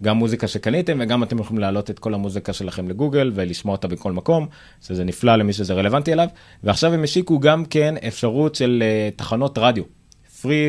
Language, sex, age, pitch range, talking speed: Hebrew, male, 30-49, 95-130 Hz, 180 wpm